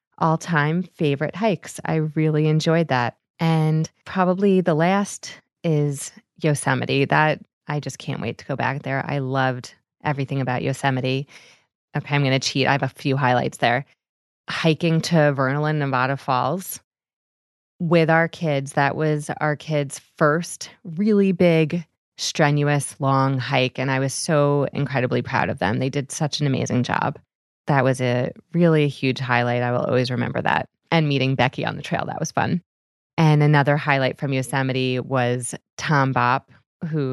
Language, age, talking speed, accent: English, 20-39, 160 wpm, American